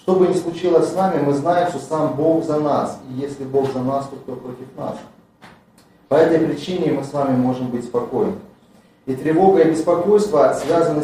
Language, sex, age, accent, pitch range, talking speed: Russian, male, 30-49, native, 145-190 Hz, 195 wpm